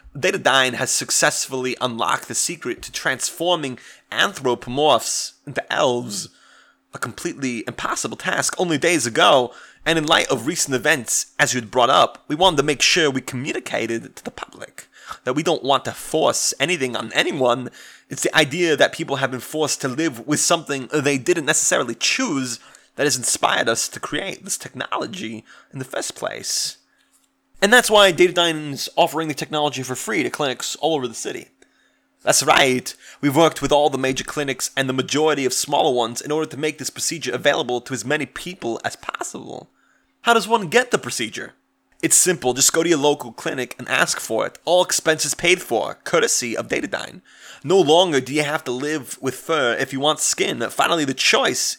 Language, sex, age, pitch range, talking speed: English, male, 30-49, 130-170 Hz, 185 wpm